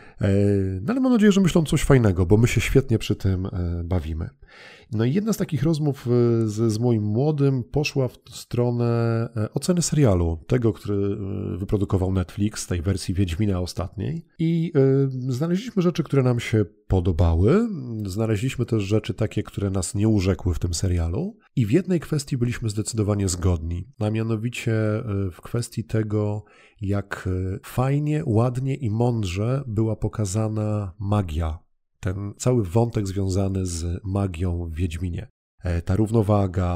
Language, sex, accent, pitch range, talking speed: Polish, male, native, 95-125 Hz, 140 wpm